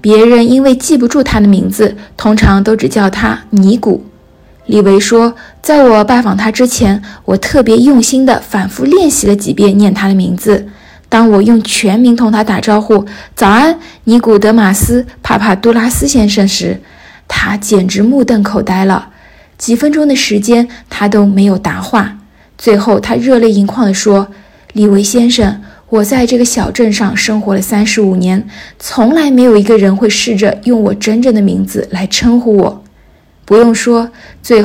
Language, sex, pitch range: Chinese, female, 200-240 Hz